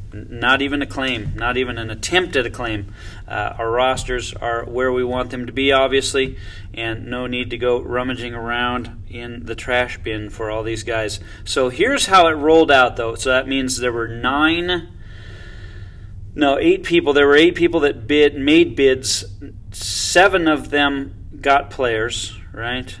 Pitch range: 105-135 Hz